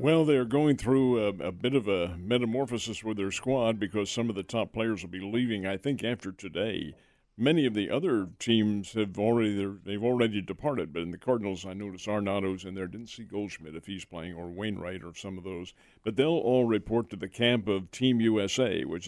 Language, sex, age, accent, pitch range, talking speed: English, male, 50-69, American, 95-115 Hz, 215 wpm